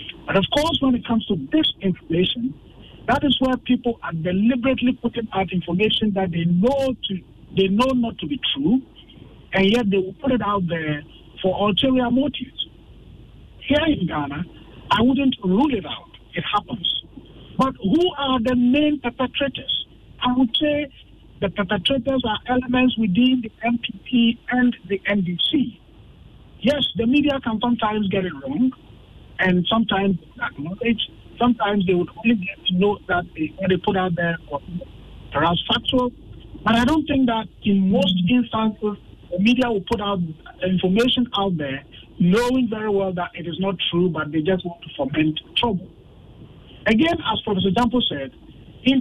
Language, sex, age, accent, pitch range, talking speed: English, male, 50-69, Nigerian, 185-255 Hz, 165 wpm